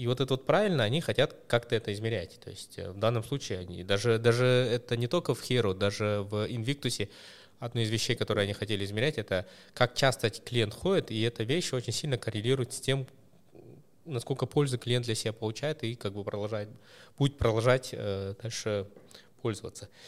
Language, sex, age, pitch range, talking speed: Russian, male, 20-39, 105-130 Hz, 175 wpm